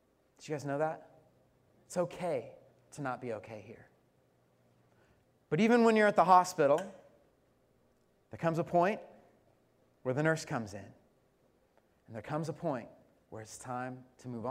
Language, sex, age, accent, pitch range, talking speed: English, male, 30-49, American, 125-170 Hz, 155 wpm